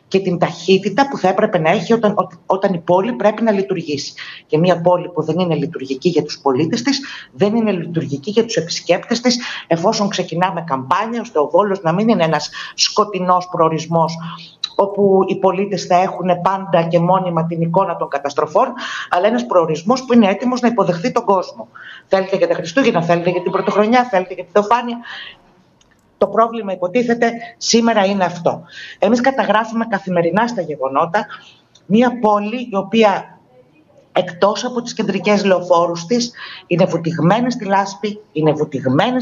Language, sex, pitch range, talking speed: Greek, female, 170-215 Hz, 160 wpm